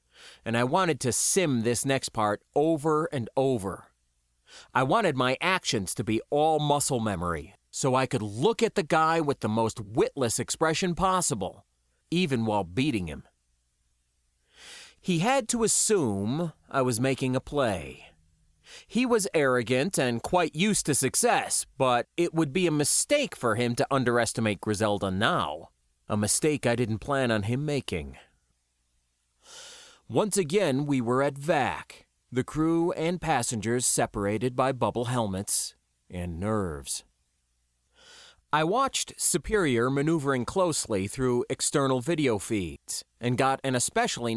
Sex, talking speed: male, 140 wpm